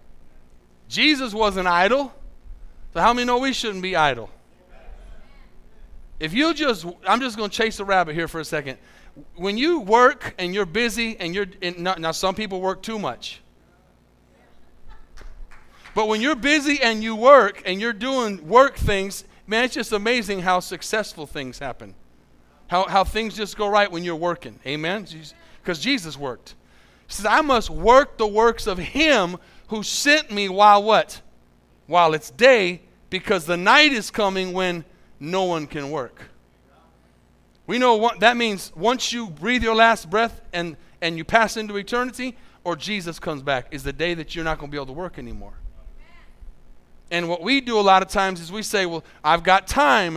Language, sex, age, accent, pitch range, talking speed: English, male, 40-59, American, 140-220 Hz, 180 wpm